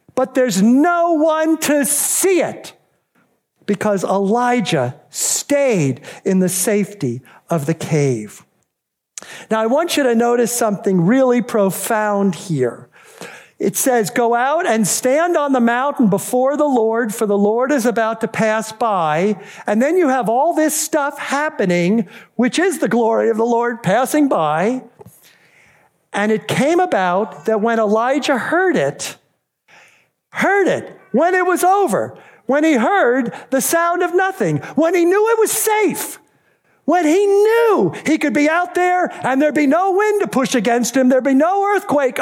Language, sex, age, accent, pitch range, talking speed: English, male, 50-69, American, 210-310 Hz, 160 wpm